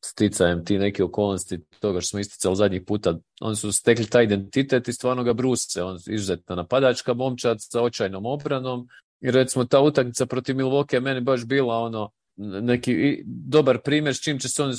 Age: 40-59